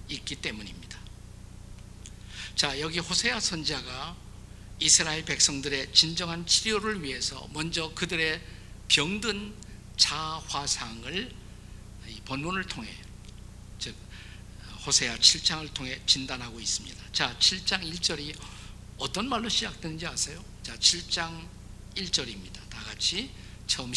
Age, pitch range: 50-69, 100-145 Hz